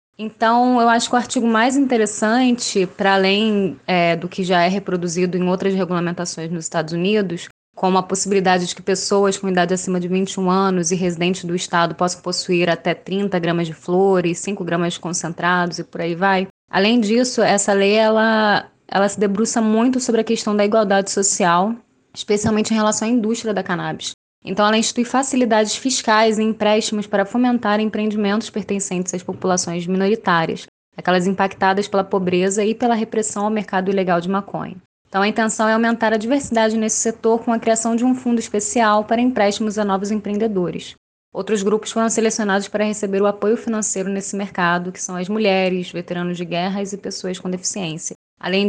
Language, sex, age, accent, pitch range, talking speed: Portuguese, female, 20-39, Brazilian, 185-220 Hz, 175 wpm